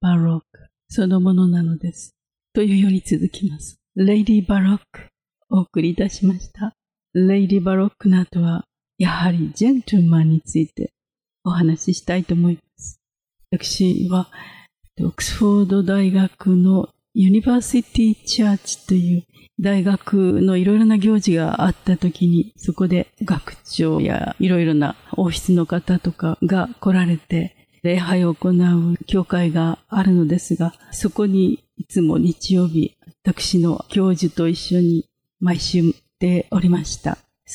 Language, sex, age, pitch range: Japanese, female, 40-59, 170-195 Hz